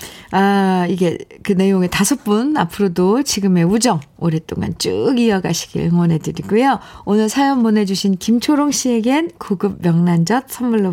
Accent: native